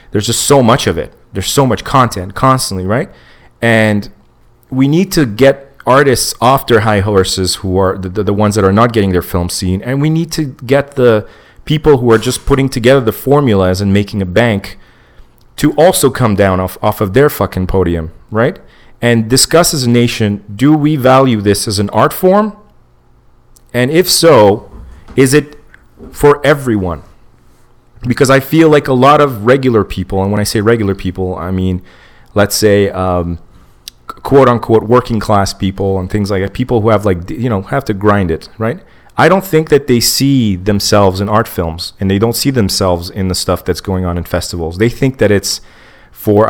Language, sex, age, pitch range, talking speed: English, male, 30-49, 95-130 Hz, 195 wpm